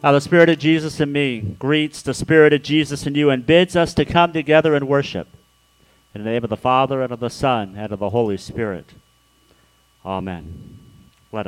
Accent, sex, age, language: American, male, 50-69, English